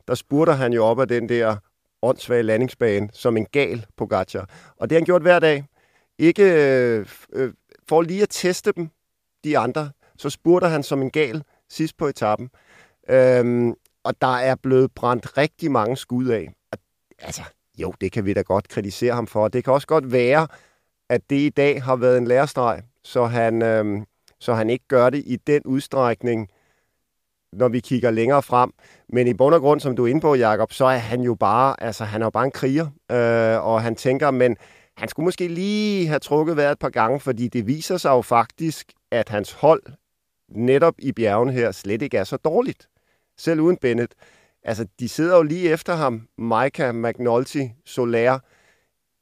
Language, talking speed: Danish, 185 wpm